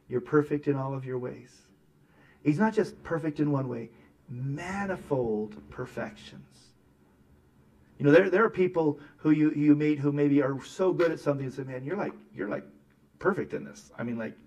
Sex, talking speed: male, 190 wpm